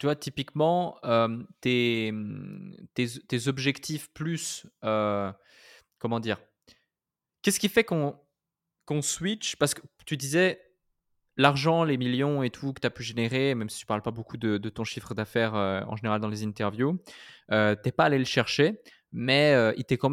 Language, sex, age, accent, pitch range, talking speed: French, male, 20-39, French, 110-140 Hz, 175 wpm